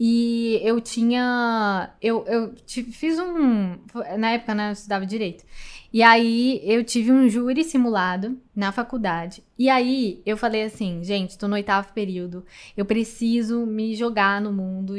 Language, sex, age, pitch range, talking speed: Portuguese, female, 10-29, 200-245 Hz, 155 wpm